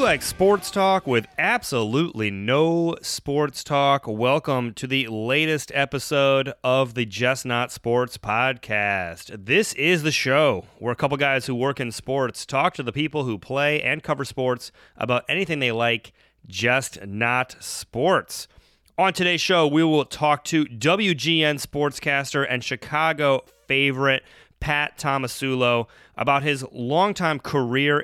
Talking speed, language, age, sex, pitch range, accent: 140 wpm, English, 30-49, male, 120-145 Hz, American